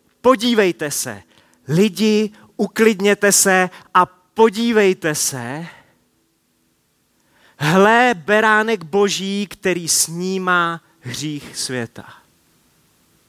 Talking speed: 70 wpm